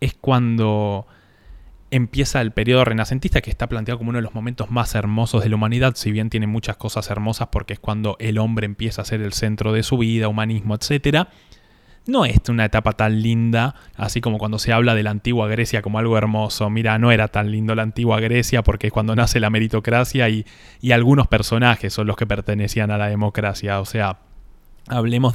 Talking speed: 205 wpm